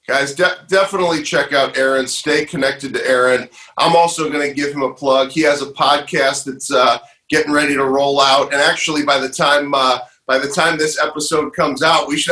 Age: 40-59